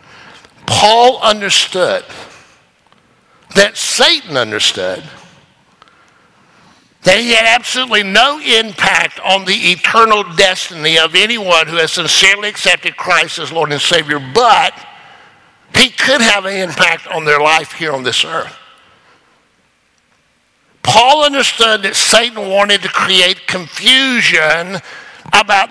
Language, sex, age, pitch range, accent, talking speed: English, male, 60-79, 165-215 Hz, American, 110 wpm